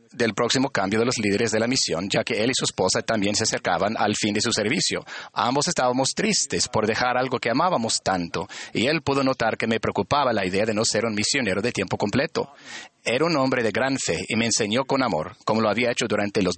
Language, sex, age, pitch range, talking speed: Spanish, male, 40-59, 105-125 Hz, 240 wpm